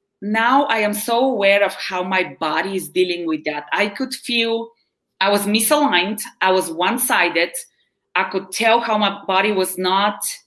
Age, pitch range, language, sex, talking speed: 20-39, 190-245 Hz, English, female, 170 wpm